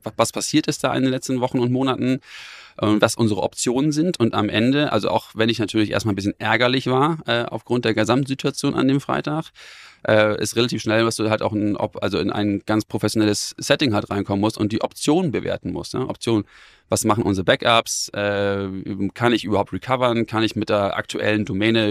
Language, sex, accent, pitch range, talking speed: German, male, German, 105-120 Hz, 205 wpm